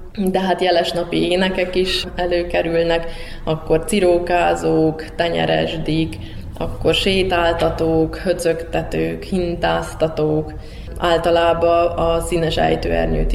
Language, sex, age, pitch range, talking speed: Hungarian, female, 20-39, 160-175 Hz, 80 wpm